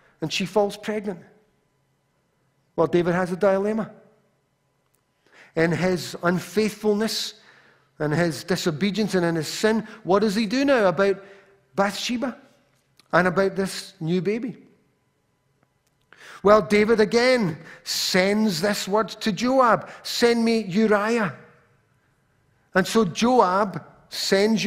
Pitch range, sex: 155-210 Hz, male